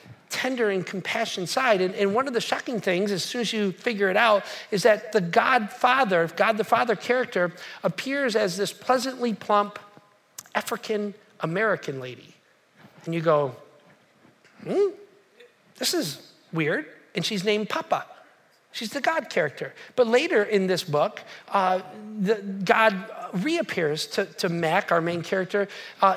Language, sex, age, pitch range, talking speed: English, male, 40-59, 185-225 Hz, 150 wpm